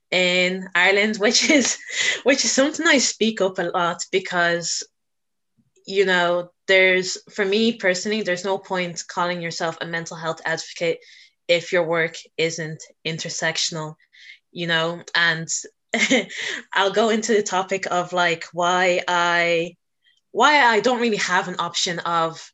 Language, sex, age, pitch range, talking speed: English, female, 20-39, 170-195 Hz, 140 wpm